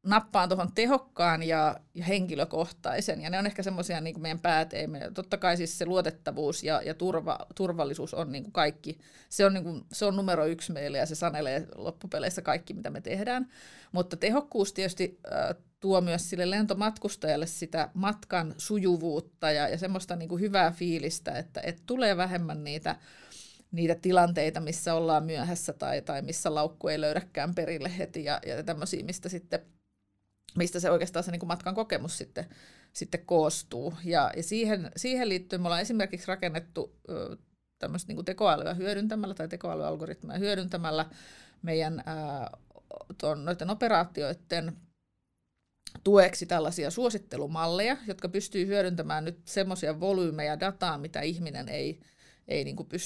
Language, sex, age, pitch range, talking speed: Finnish, female, 30-49, 160-190 Hz, 130 wpm